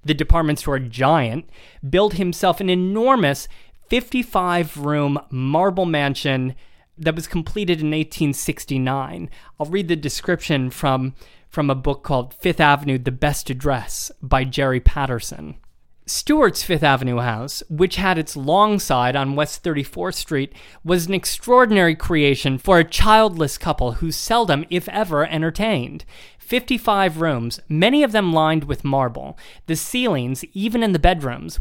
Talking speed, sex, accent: 140 wpm, male, American